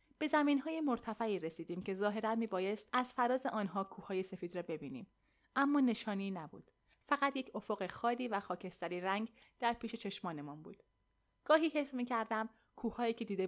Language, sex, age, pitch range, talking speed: Persian, female, 20-39, 190-260 Hz, 160 wpm